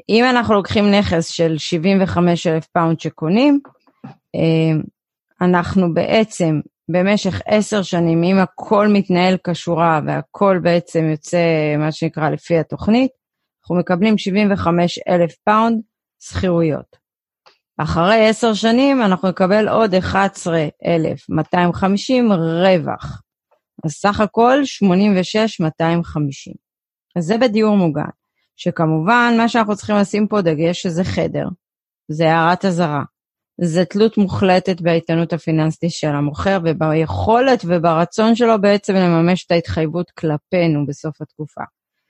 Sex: female